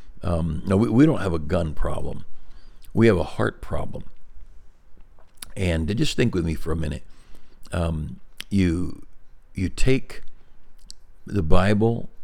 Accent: American